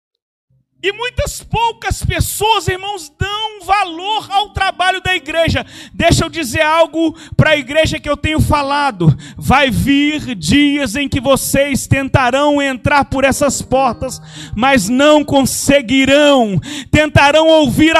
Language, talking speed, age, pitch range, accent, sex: Portuguese, 125 wpm, 40-59, 280-365 Hz, Brazilian, male